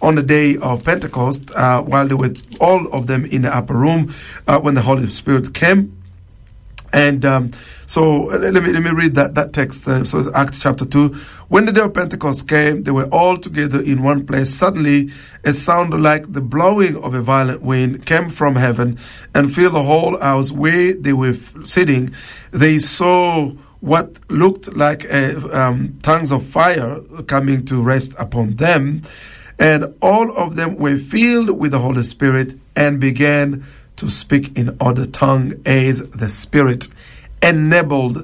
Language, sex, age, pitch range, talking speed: English, male, 50-69, 130-155 Hz, 170 wpm